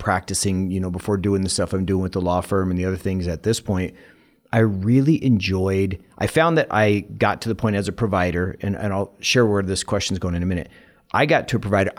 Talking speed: 250 wpm